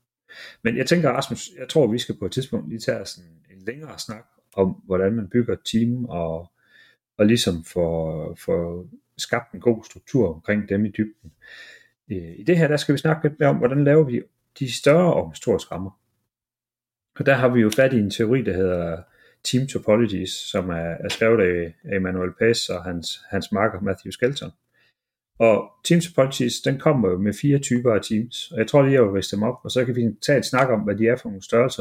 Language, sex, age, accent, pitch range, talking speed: Danish, male, 40-59, native, 95-130 Hz, 215 wpm